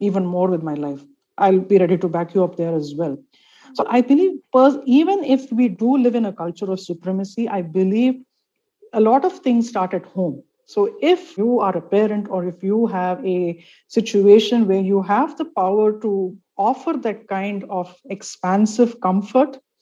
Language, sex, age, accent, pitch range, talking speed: English, female, 50-69, Indian, 185-240 Hz, 185 wpm